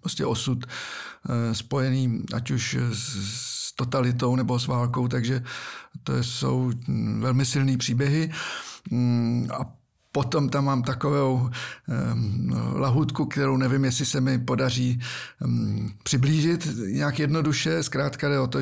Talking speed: 110 wpm